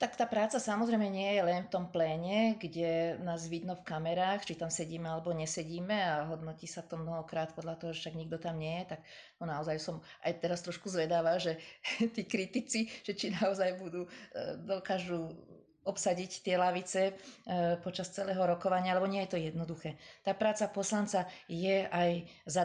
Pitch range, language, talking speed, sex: 170-190 Hz, Slovak, 175 wpm, female